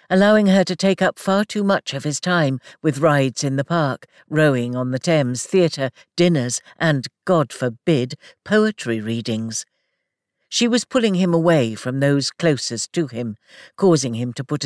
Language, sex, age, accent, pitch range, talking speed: English, female, 60-79, British, 130-185 Hz, 170 wpm